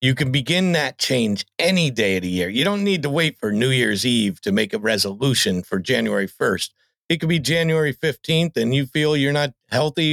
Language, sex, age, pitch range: Thai, male, 50-69, 100-155 Hz